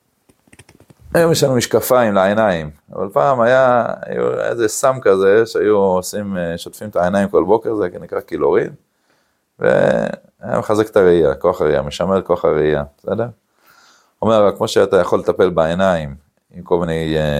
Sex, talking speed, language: male, 145 wpm, Hebrew